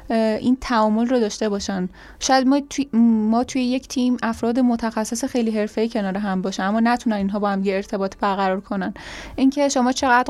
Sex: female